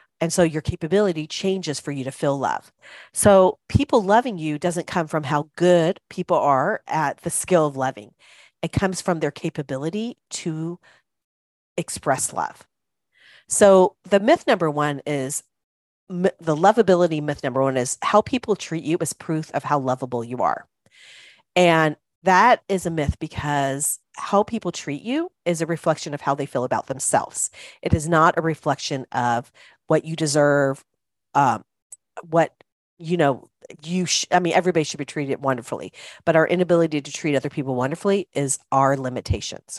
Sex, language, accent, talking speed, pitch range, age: female, English, American, 165 wpm, 140-180 Hz, 40-59